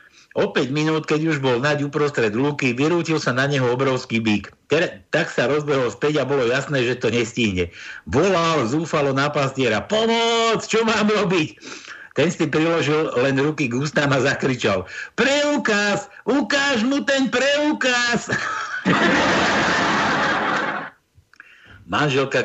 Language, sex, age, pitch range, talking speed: Slovak, male, 60-79, 140-210 Hz, 130 wpm